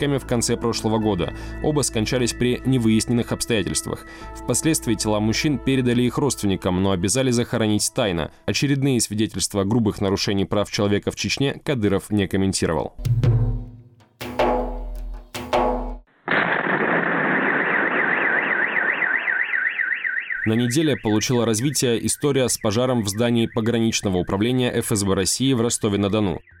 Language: Russian